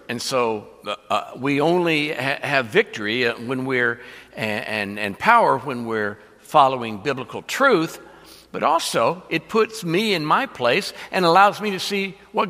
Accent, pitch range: American, 115-170 Hz